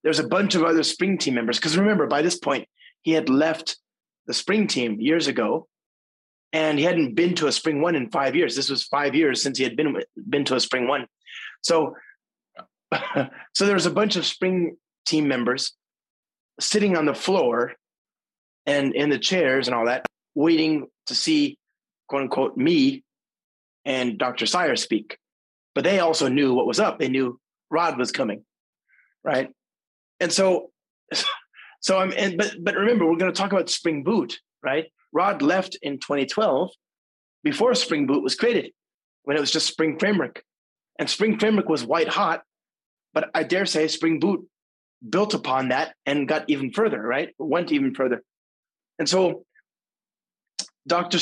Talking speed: 170 wpm